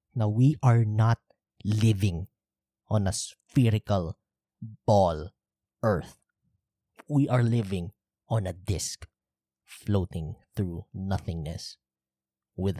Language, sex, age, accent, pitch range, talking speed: Filipino, male, 20-39, native, 90-115 Hz, 95 wpm